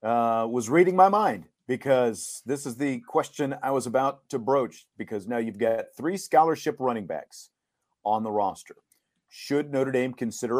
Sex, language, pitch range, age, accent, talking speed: male, English, 120-155 Hz, 40-59, American, 170 wpm